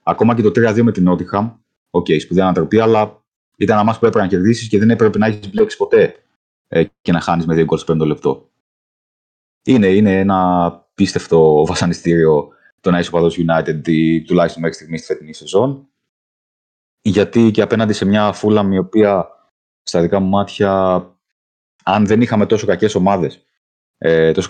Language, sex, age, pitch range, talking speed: Greek, male, 30-49, 80-105 Hz, 165 wpm